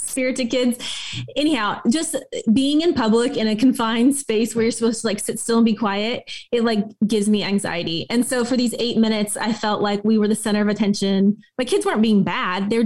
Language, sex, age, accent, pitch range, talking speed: English, female, 20-39, American, 215-255 Hz, 220 wpm